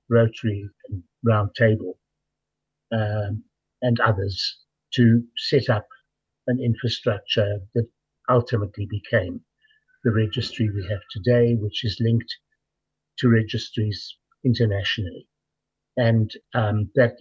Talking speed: 95 wpm